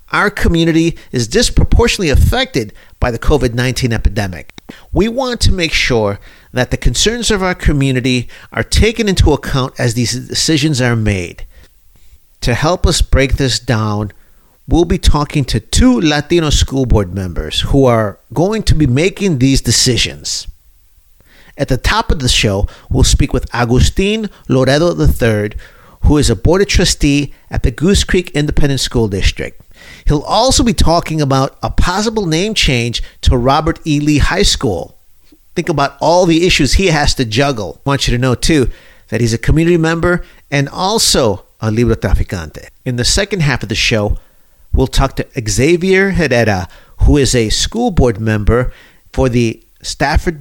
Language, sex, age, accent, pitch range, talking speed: English, male, 50-69, American, 110-155 Hz, 165 wpm